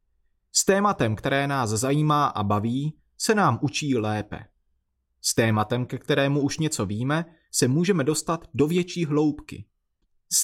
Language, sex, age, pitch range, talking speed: Czech, male, 30-49, 110-165 Hz, 145 wpm